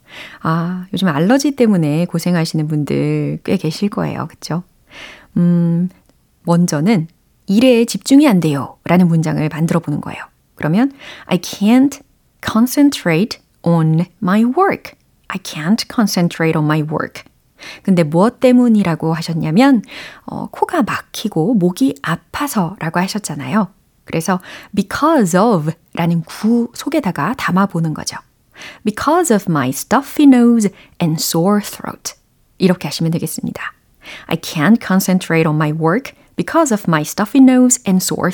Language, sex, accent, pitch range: Korean, female, native, 165-240 Hz